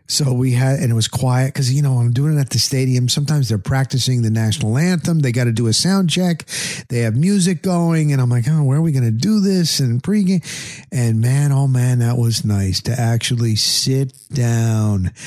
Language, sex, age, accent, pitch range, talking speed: English, male, 50-69, American, 115-150 Hz, 220 wpm